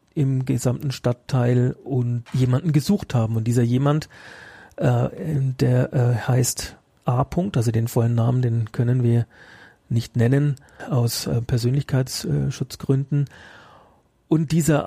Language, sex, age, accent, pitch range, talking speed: German, male, 40-59, German, 120-140 Hz, 120 wpm